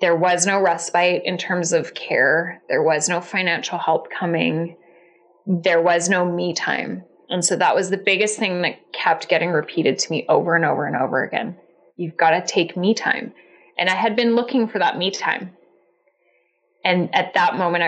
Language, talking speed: English, 190 wpm